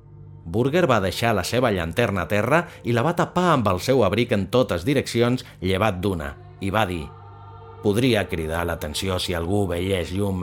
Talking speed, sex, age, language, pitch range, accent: 180 wpm, male, 30-49, Spanish, 95-125 Hz, Spanish